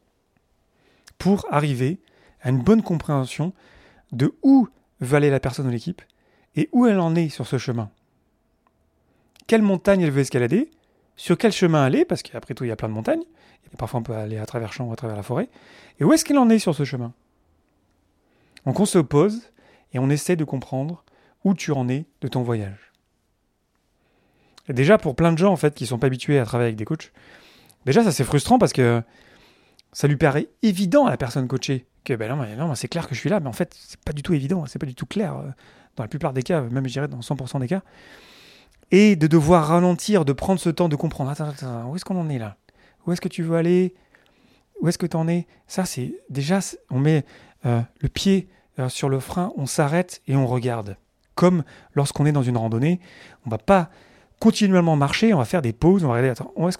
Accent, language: French, French